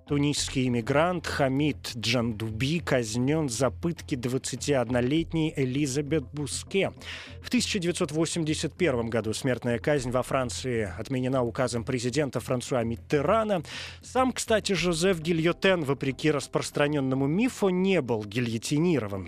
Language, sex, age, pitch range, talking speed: Russian, male, 20-39, 120-160 Hz, 100 wpm